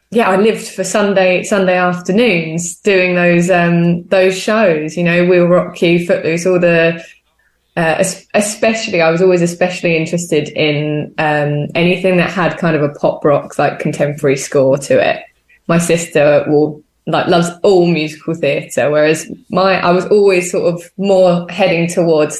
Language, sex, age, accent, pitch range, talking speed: English, female, 20-39, British, 155-180 Hz, 160 wpm